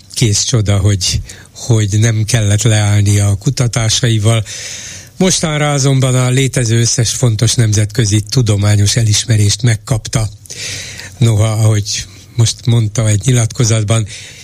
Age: 60-79